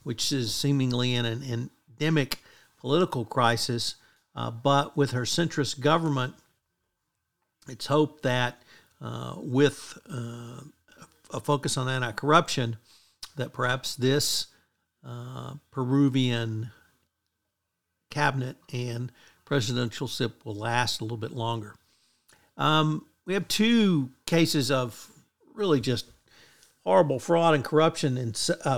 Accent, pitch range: American, 120-150 Hz